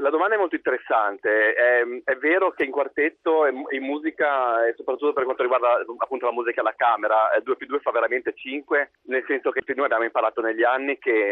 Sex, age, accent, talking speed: male, 30-49, native, 205 wpm